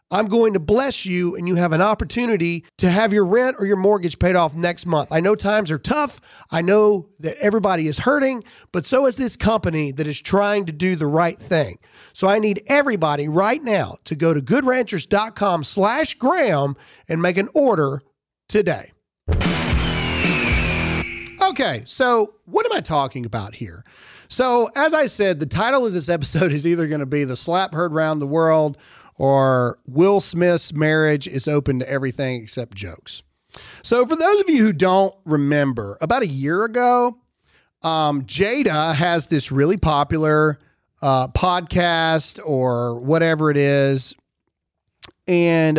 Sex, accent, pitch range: male, American, 150-210 Hz